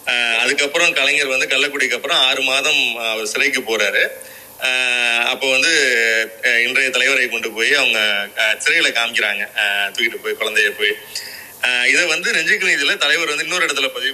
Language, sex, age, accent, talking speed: Tamil, male, 30-49, native, 155 wpm